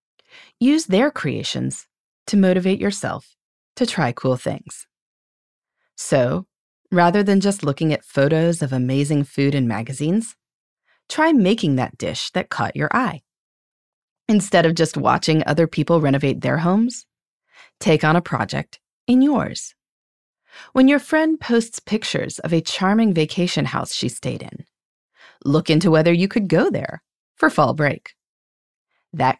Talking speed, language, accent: 140 wpm, English, American